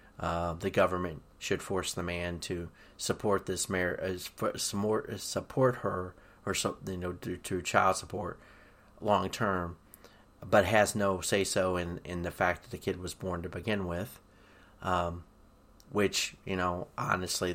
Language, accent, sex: English, American, male